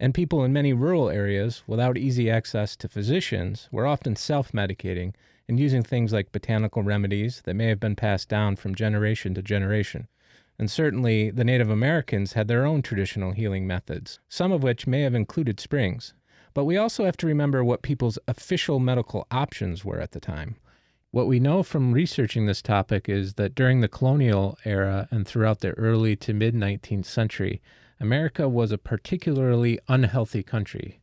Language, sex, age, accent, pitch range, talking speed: English, male, 30-49, American, 105-130 Hz, 170 wpm